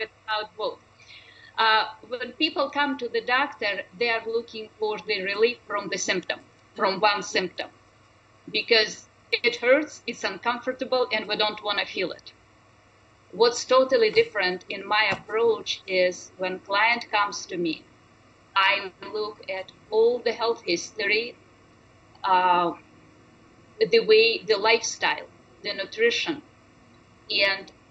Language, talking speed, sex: English, 130 wpm, female